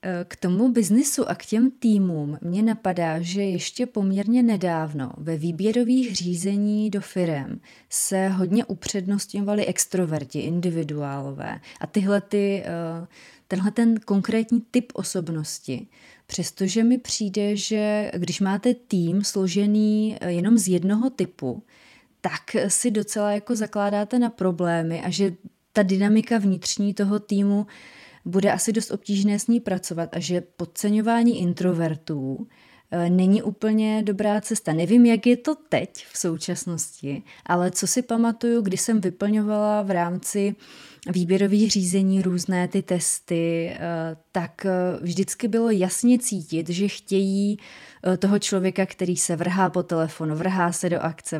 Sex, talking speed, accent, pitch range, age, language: female, 125 wpm, native, 175-210 Hz, 30-49, Czech